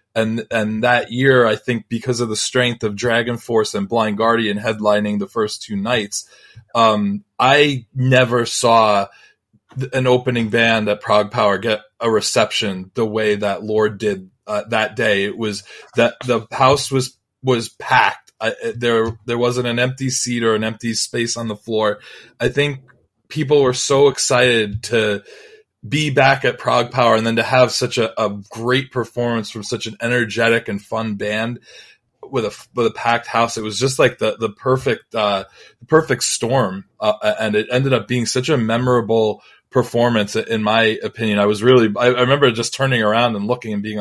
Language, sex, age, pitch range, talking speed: English, male, 20-39, 105-125 Hz, 185 wpm